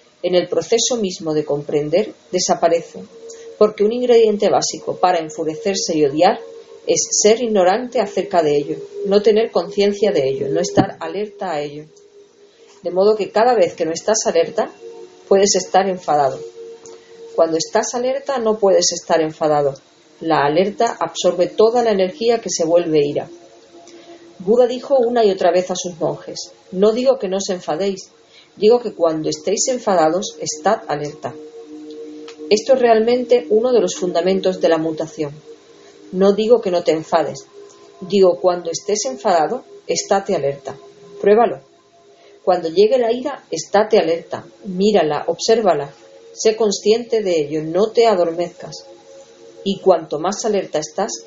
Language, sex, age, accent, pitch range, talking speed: Spanish, female, 40-59, Spanish, 165-230 Hz, 145 wpm